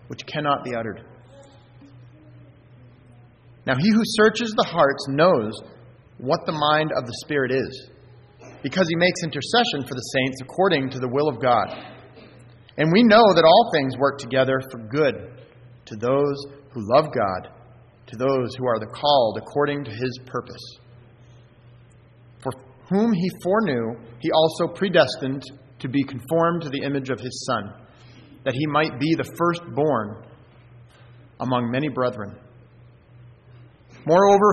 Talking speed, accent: 145 wpm, American